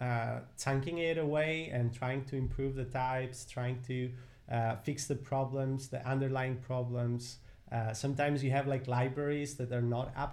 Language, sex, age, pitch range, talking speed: English, male, 30-49, 120-145 Hz, 170 wpm